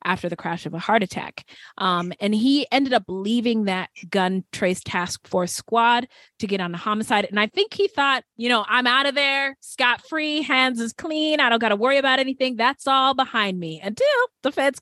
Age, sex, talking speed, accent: 20-39, female, 220 wpm, American